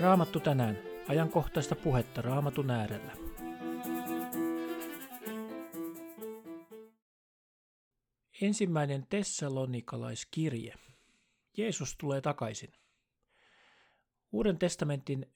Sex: male